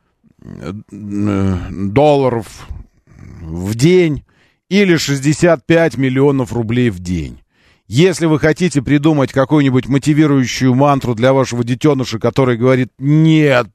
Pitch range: 120-175 Hz